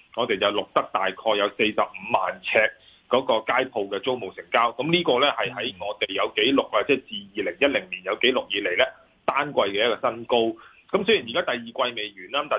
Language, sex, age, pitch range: Chinese, male, 30-49, 115-165 Hz